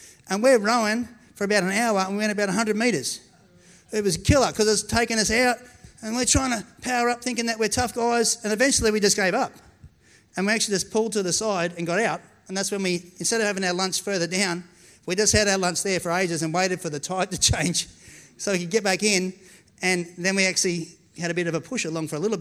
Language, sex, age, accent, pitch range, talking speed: English, male, 30-49, Australian, 180-245 Hz, 255 wpm